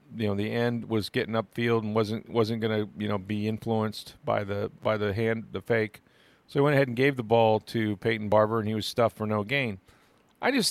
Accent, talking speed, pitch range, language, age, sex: American, 235 wpm, 110-135 Hz, English, 40-59, male